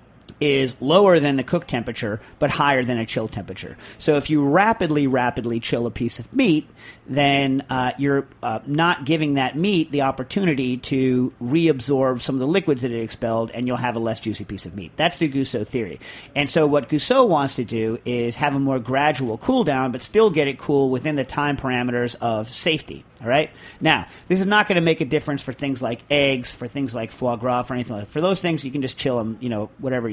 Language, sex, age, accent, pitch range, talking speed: English, male, 40-59, American, 120-150 Hz, 225 wpm